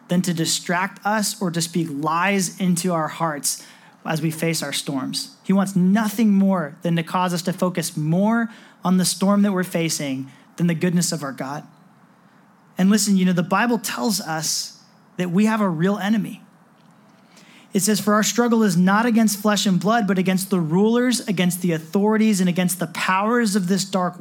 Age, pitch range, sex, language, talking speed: 30-49, 175-210 Hz, male, English, 195 wpm